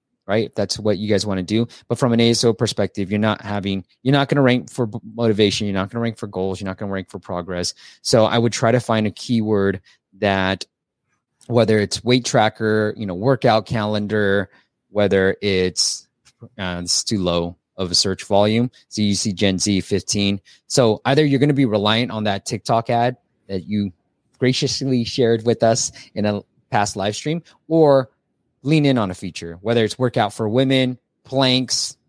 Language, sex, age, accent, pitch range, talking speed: English, male, 20-39, American, 100-125 Hz, 195 wpm